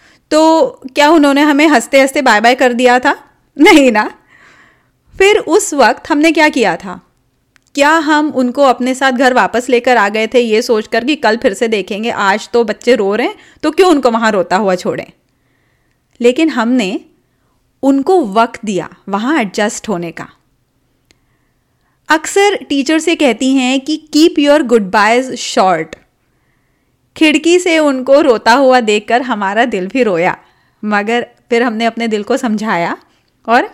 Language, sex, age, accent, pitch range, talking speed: Hindi, female, 30-49, native, 225-305 Hz, 160 wpm